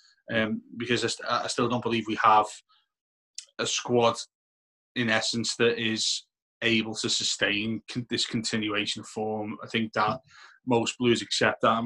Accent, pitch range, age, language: British, 110-120 Hz, 20-39, English